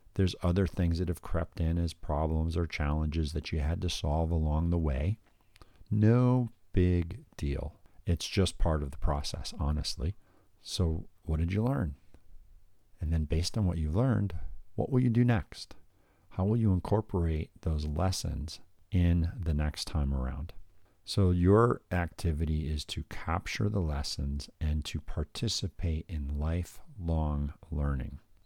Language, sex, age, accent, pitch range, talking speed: English, male, 50-69, American, 75-95 Hz, 150 wpm